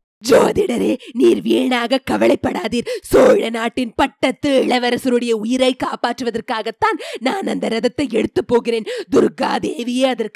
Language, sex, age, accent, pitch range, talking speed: Tamil, female, 20-39, native, 220-285 Hz, 95 wpm